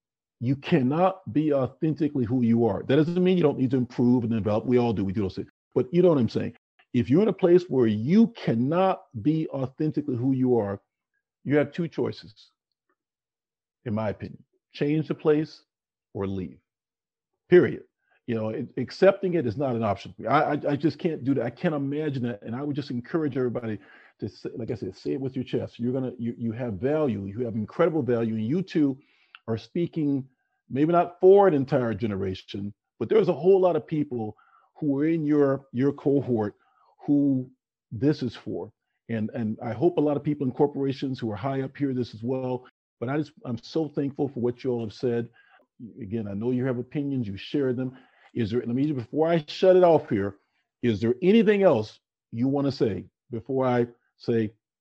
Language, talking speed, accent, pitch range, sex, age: English, 205 wpm, American, 115-150 Hz, male, 50-69